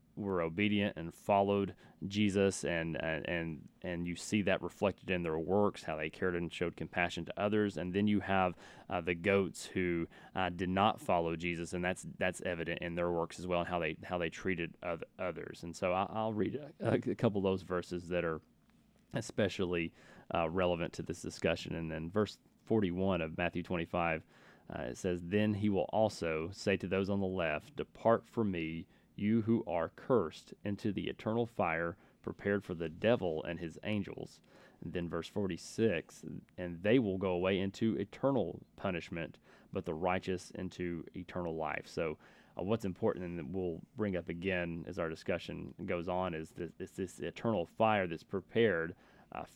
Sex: male